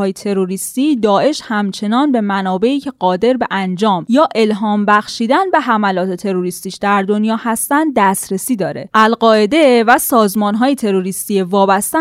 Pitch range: 195-260 Hz